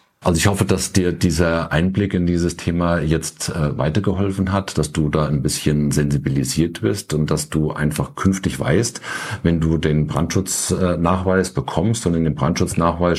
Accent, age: German, 50-69